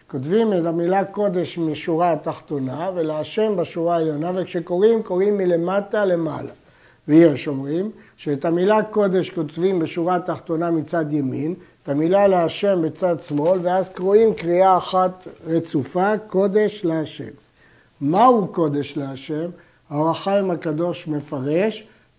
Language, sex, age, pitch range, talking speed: Hebrew, male, 60-79, 160-205 Hz, 110 wpm